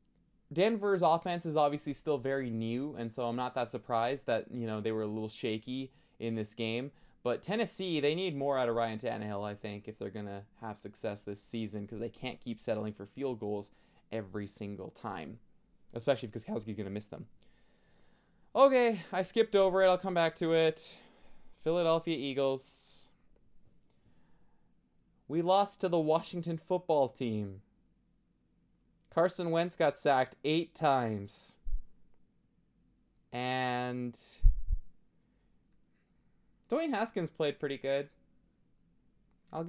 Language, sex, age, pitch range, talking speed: English, male, 20-39, 110-165 Hz, 140 wpm